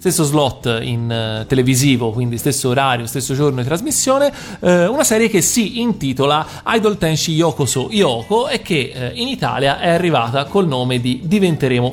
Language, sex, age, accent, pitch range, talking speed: Italian, male, 40-59, native, 125-175 Hz, 175 wpm